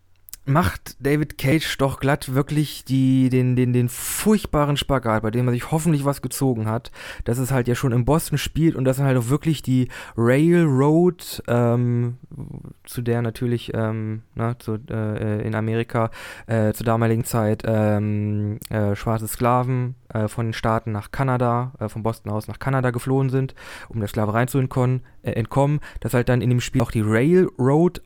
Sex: male